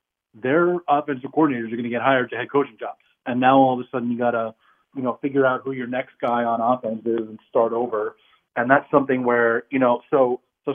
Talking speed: 240 wpm